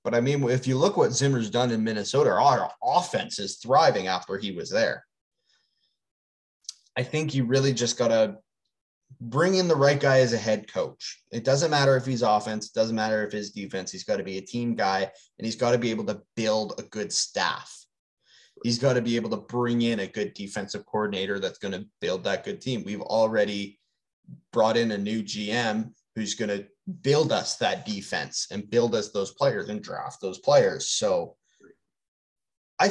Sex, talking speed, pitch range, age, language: male, 195 wpm, 105-135 Hz, 20-39, English